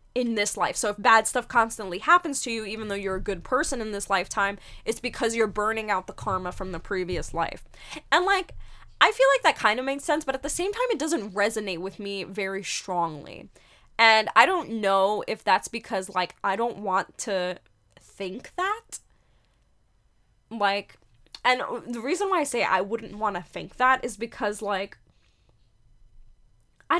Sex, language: female, English